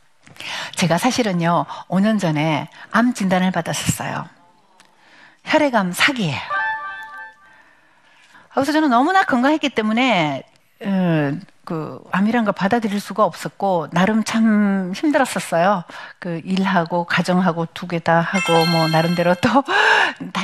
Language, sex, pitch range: Korean, female, 175-265 Hz